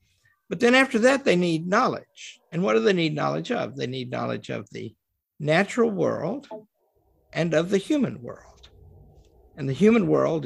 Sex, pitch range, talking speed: male, 140-240 Hz, 170 wpm